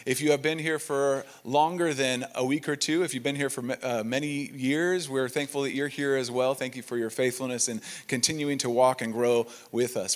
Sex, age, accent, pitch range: male, 40-59, American, 120-150 Hz